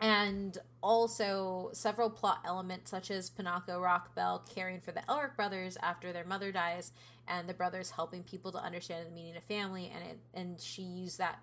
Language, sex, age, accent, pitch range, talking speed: English, female, 20-39, American, 175-200 Hz, 185 wpm